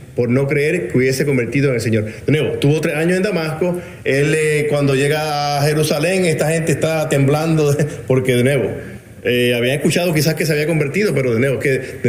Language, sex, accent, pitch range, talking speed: Spanish, male, Venezuelan, 125-155 Hz, 200 wpm